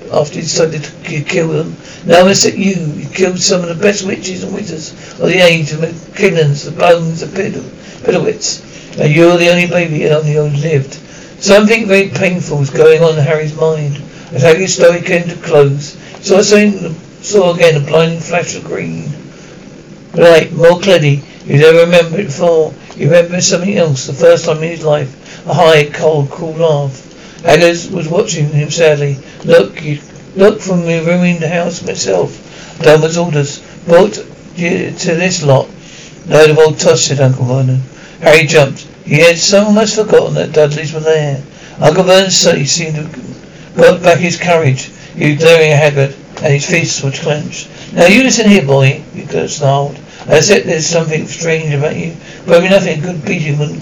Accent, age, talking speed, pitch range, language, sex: British, 60-79, 185 wpm, 150-175 Hz, English, male